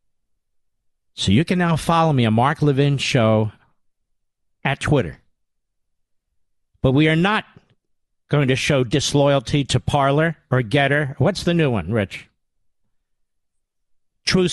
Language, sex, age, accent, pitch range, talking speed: English, male, 50-69, American, 115-175 Hz, 125 wpm